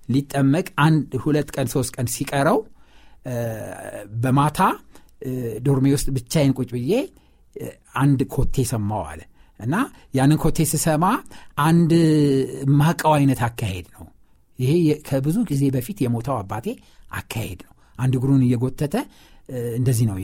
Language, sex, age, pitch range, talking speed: Amharic, male, 60-79, 125-160 Hz, 115 wpm